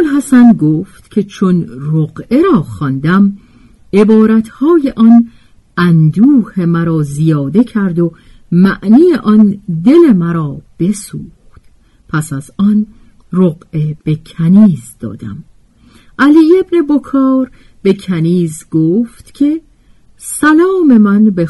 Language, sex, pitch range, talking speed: Persian, female, 150-235 Hz, 100 wpm